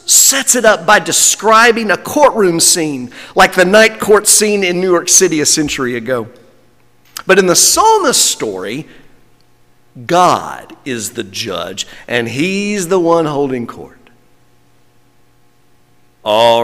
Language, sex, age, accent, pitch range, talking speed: English, male, 50-69, American, 135-215 Hz, 130 wpm